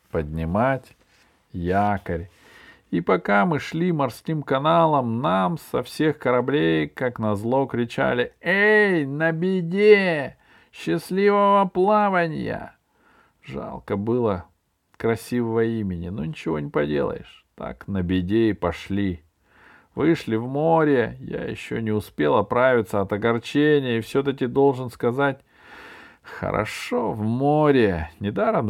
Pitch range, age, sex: 95-145 Hz, 40-59, male